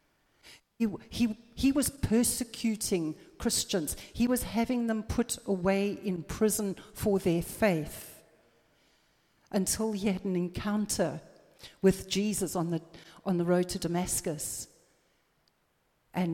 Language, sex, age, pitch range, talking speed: English, female, 60-79, 180-215 Hz, 120 wpm